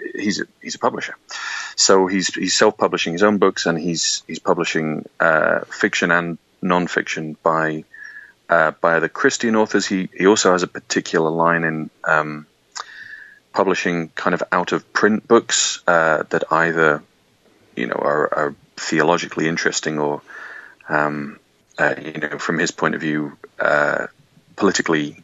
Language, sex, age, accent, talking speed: English, male, 30-49, British, 150 wpm